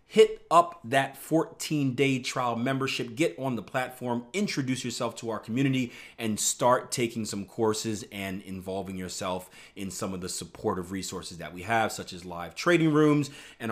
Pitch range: 95-140 Hz